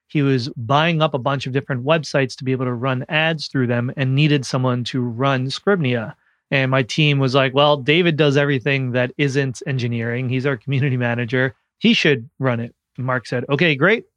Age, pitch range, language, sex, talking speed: 30-49, 125-145 Hz, English, male, 200 wpm